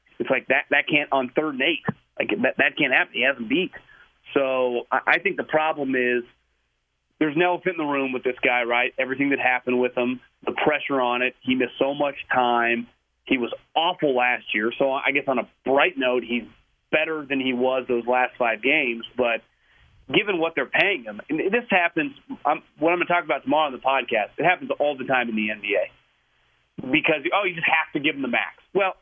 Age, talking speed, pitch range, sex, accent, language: 30-49, 215 wpm, 125-170 Hz, male, American, English